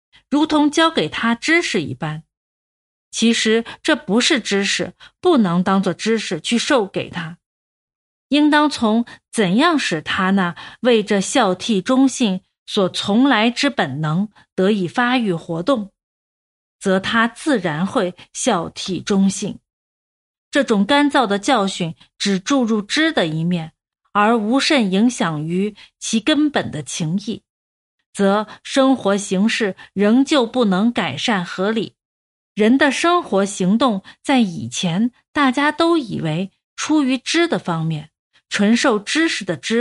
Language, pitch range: Chinese, 190-265 Hz